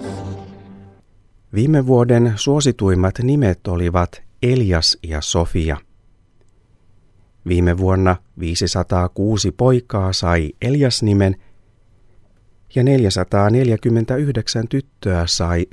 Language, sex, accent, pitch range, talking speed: Finnish, male, native, 90-110 Hz, 70 wpm